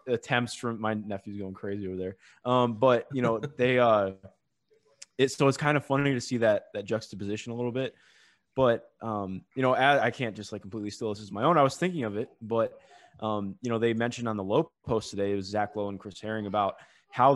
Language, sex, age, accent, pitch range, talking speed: English, male, 20-39, American, 100-130 Hz, 235 wpm